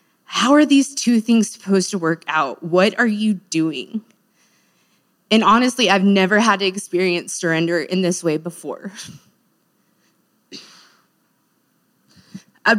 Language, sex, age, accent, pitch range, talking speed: English, female, 20-39, American, 185-220 Hz, 120 wpm